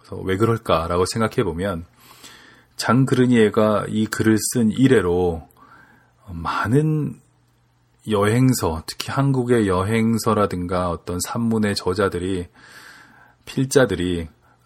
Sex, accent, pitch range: male, native, 95-125 Hz